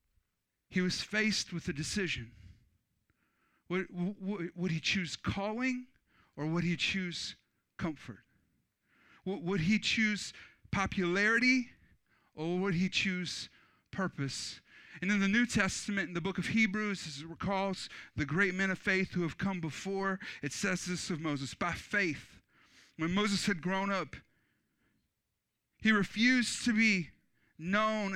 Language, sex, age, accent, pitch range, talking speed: English, male, 40-59, American, 165-210 Hz, 135 wpm